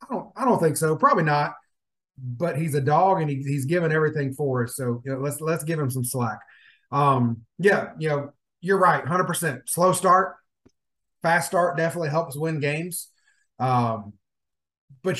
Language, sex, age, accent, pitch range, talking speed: English, male, 30-49, American, 140-180 Hz, 180 wpm